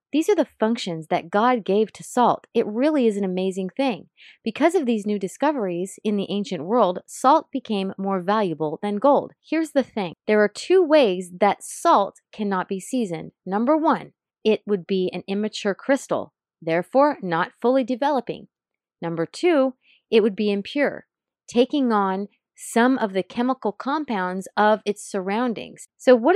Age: 30-49